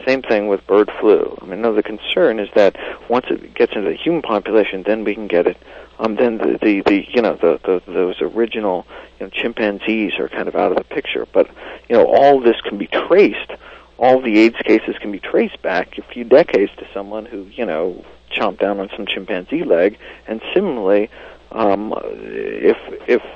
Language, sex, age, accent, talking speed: English, male, 50-69, American, 205 wpm